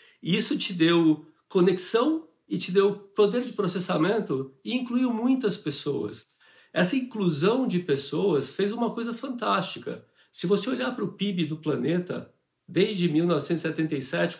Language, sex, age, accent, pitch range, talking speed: Portuguese, male, 50-69, Brazilian, 155-200 Hz, 135 wpm